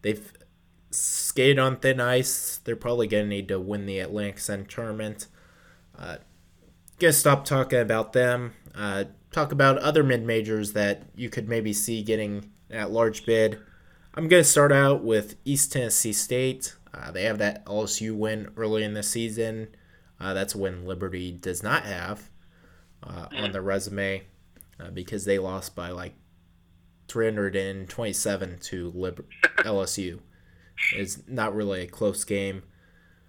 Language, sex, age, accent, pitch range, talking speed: English, male, 20-39, American, 95-120 Hz, 150 wpm